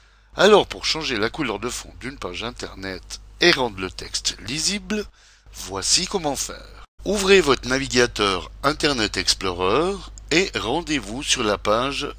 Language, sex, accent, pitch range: French, male, French, 100-140 Hz